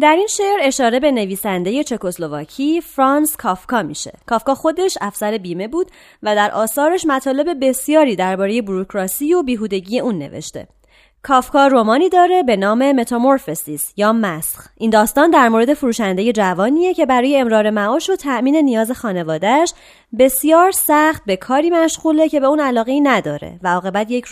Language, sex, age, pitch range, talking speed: Persian, female, 30-49, 205-295 Hz, 155 wpm